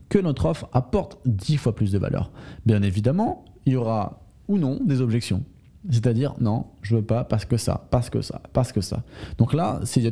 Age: 20-39